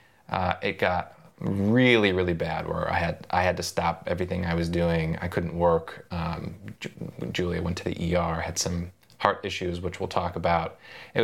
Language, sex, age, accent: English, male, 30-49, American